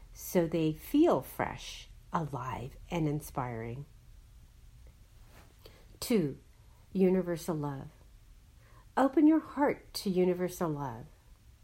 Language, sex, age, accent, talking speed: English, female, 50-69, American, 80 wpm